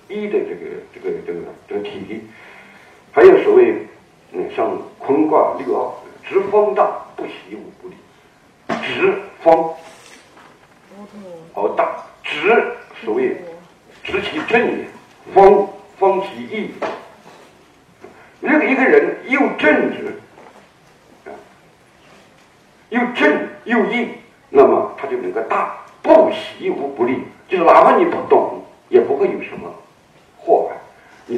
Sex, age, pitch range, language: male, 60-79, 320-385 Hz, Chinese